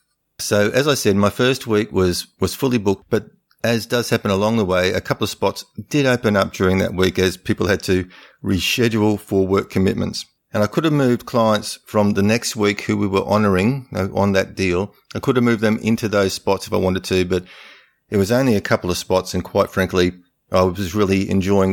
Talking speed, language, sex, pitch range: 220 wpm, English, male, 90-105 Hz